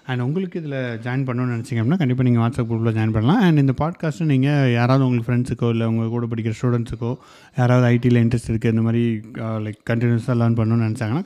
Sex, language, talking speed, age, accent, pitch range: male, Tamil, 185 wpm, 30-49, native, 115-135 Hz